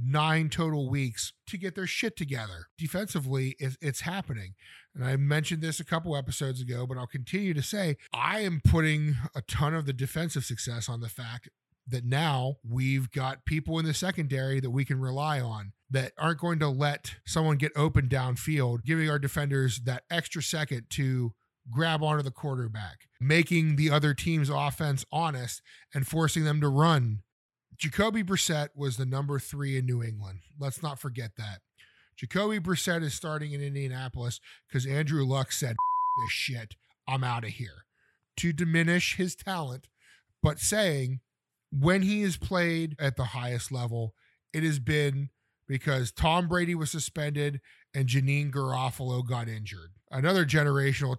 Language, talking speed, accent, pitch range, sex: English, 160 wpm, American, 130-155 Hz, male